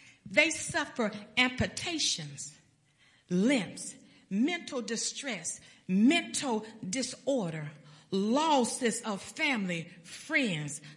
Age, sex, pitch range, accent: 50-69, female, 195-280 Hz, American